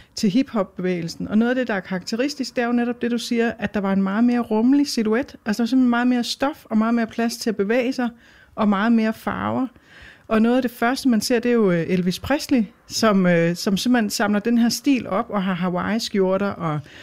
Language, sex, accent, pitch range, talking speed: Danish, female, native, 200-245 Hz, 235 wpm